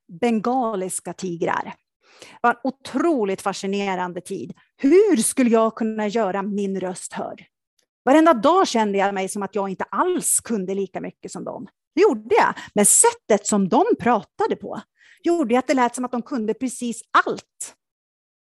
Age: 30-49